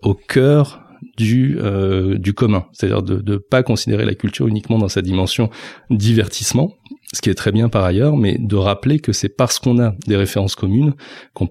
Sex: male